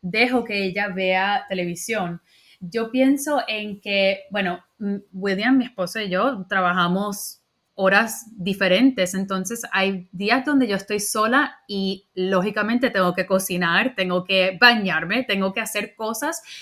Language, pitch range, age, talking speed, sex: Spanish, 195-255 Hz, 30-49, 135 wpm, female